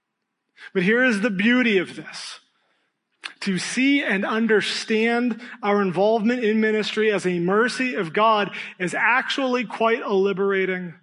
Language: English